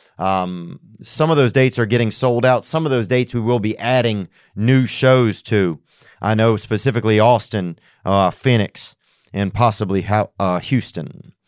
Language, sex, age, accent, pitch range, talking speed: English, male, 40-59, American, 105-130 Hz, 160 wpm